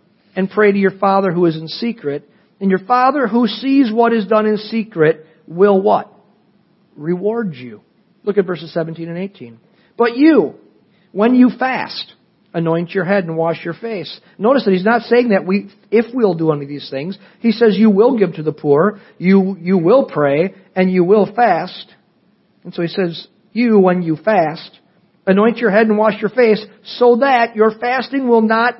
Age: 50-69